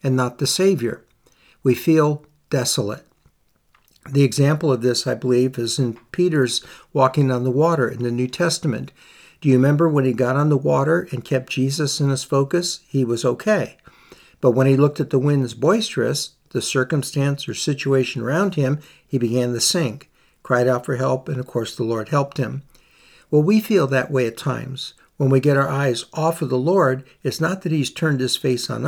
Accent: American